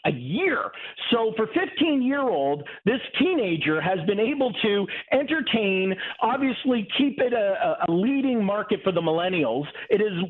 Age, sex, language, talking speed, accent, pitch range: 50-69, male, English, 140 wpm, American, 180-240 Hz